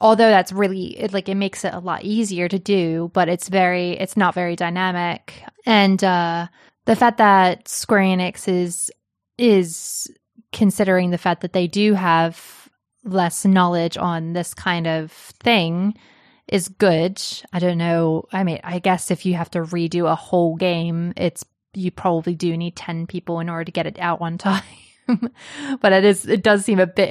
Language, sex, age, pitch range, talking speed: English, female, 20-39, 170-195 Hz, 185 wpm